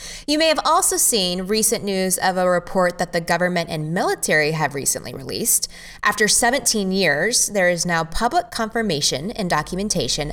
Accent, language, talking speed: American, English, 165 wpm